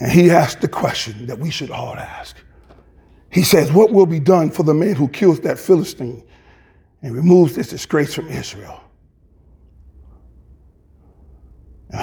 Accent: American